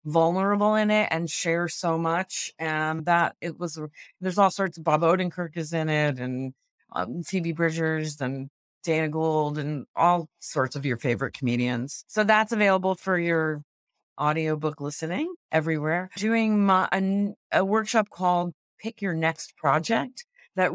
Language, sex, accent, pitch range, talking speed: English, female, American, 155-175 Hz, 155 wpm